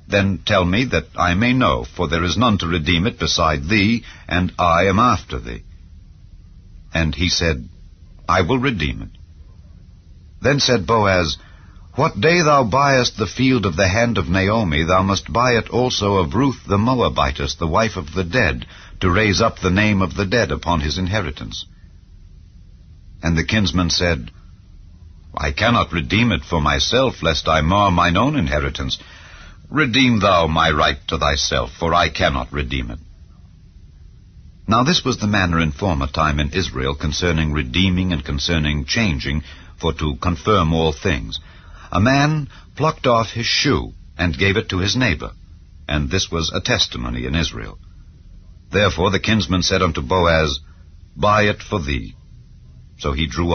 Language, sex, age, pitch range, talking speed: English, male, 60-79, 80-100 Hz, 165 wpm